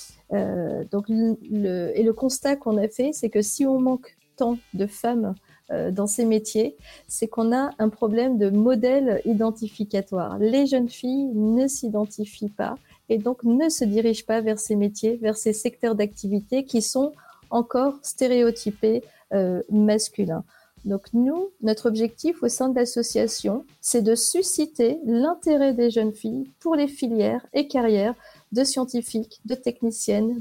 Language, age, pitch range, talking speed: French, 40-59, 210-250 Hz, 155 wpm